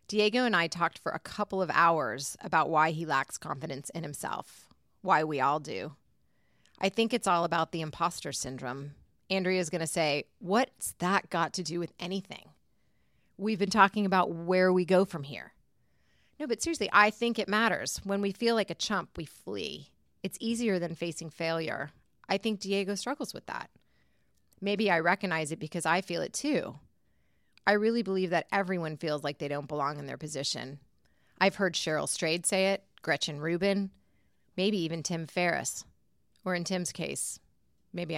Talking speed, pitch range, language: 180 wpm, 165-195 Hz, English